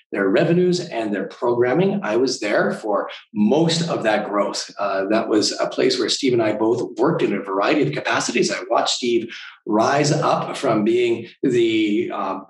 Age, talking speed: 40-59, 185 wpm